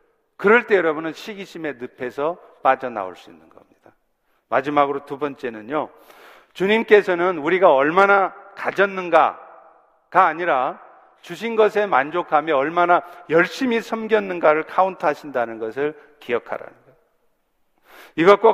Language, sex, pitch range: Korean, male, 155-205 Hz